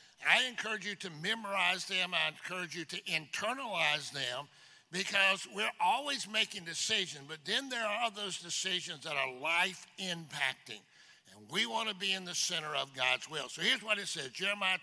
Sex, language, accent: male, English, American